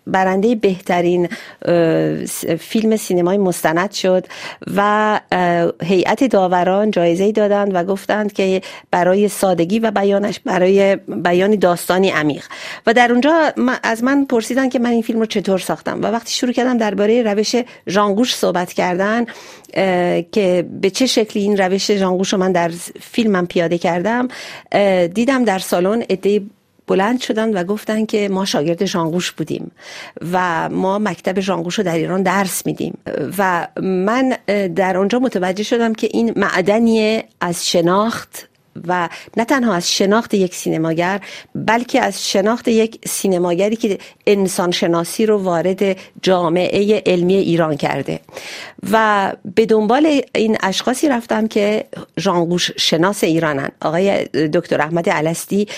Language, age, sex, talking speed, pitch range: Persian, 50-69, female, 135 wpm, 180-220 Hz